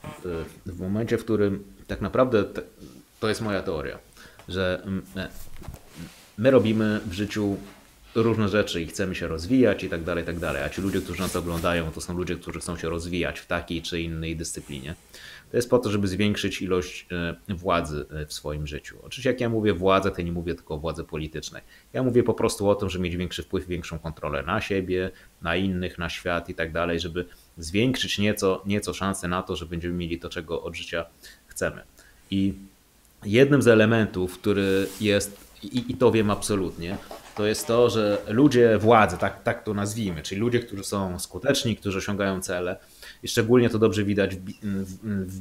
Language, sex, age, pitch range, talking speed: Polish, male, 30-49, 85-105 Hz, 185 wpm